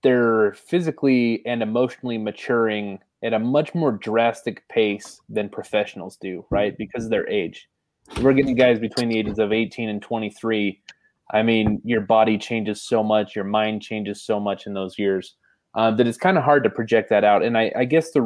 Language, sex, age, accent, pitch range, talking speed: English, male, 20-39, American, 110-140 Hz, 195 wpm